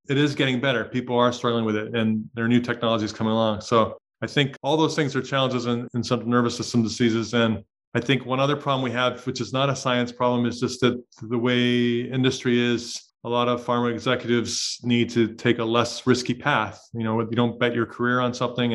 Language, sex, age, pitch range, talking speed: English, male, 30-49, 115-125 Hz, 230 wpm